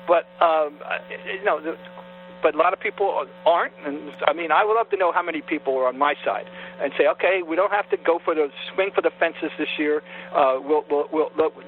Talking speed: 230 wpm